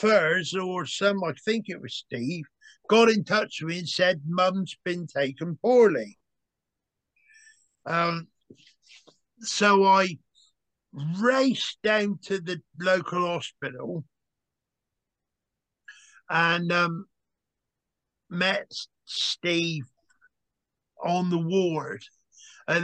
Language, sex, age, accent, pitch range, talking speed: English, male, 50-69, British, 155-195 Hz, 95 wpm